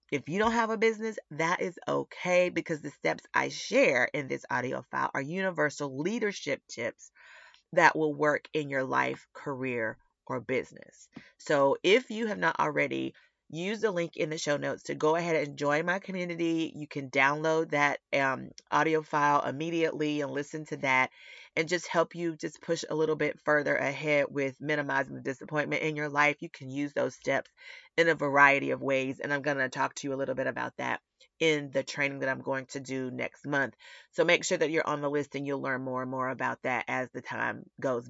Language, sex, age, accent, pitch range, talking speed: English, female, 30-49, American, 135-160 Hz, 210 wpm